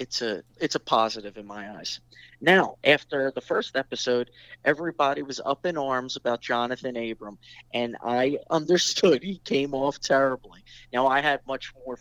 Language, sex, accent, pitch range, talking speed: English, male, American, 120-150 Hz, 165 wpm